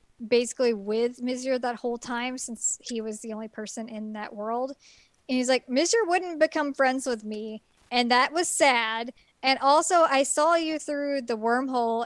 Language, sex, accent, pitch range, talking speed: English, male, American, 235-295 Hz, 180 wpm